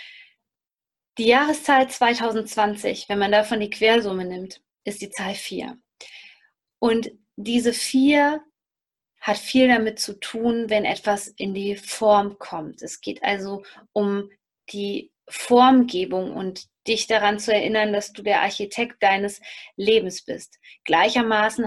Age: 20-39